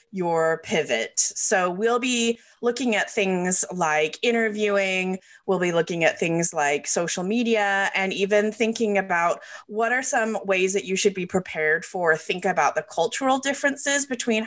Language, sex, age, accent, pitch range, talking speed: English, female, 30-49, American, 170-220 Hz, 160 wpm